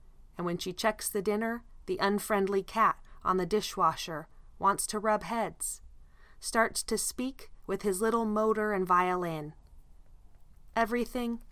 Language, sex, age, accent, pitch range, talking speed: English, female, 20-39, American, 160-205 Hz, 130 wpm